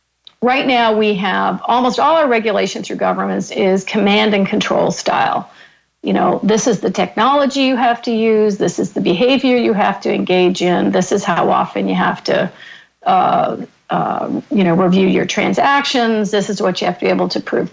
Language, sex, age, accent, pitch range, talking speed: English, female, 50-69, American, 205-250 Hz, 195 wpm